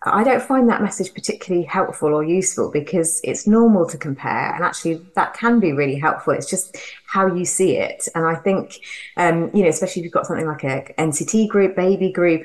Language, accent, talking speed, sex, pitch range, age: English, British, 210 wpm, female, 155-190 Hz, 30-49